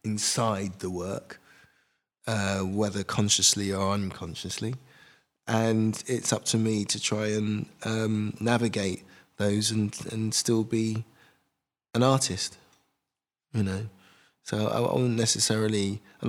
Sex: male